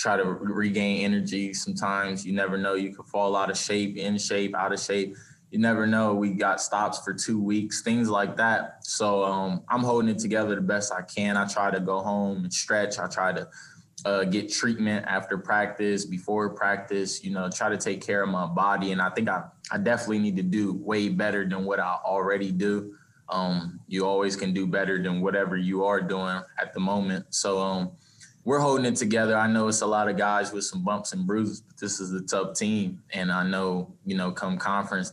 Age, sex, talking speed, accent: 20-39, male, 220 wpm, American